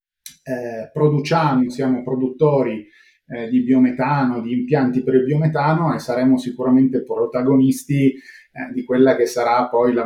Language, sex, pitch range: Italian, male, 125-150 Hz